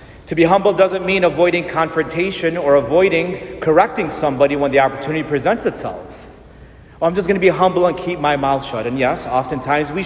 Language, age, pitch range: English, 40-59, 140-195 Hz